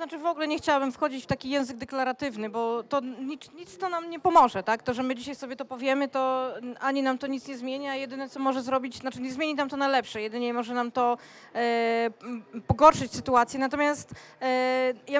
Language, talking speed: Polish, 215 wpm